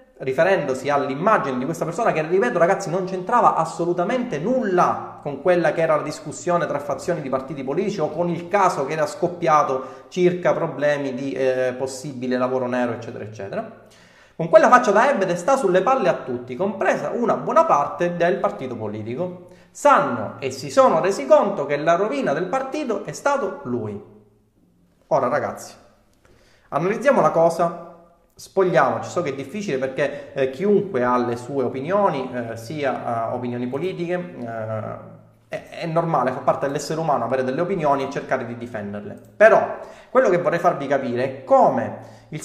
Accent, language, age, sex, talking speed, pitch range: native, Italian, 30-49, male, 165 wpm, 135-200 Hz